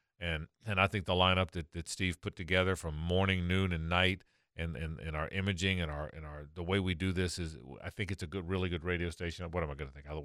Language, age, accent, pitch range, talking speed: English, 40-59, American, 90-105 Hz, 275 wpm